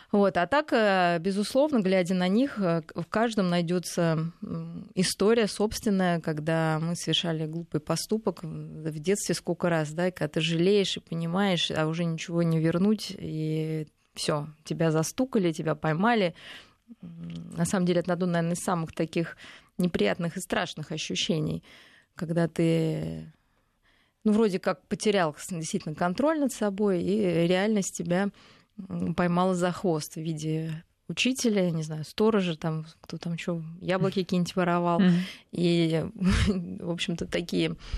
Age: 20-39